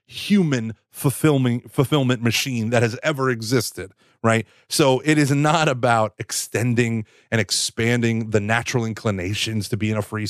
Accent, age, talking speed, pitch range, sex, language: American, 30-49, 140 wpm, 110-150 Hz, male, English